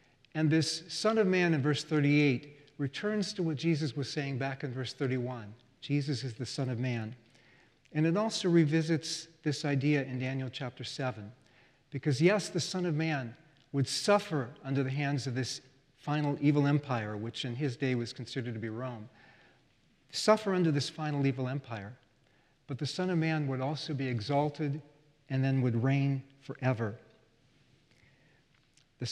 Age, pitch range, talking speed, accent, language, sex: 50-69, 130-155 Hz, 165 wpm, American, English, male